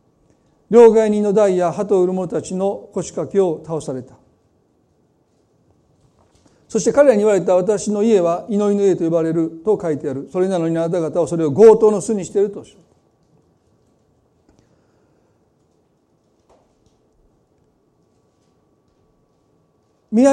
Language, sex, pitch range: Japanese, male, 170-220 Hz